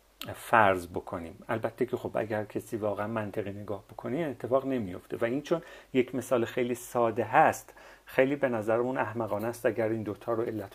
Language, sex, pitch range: Persian, male, 115-150 Hz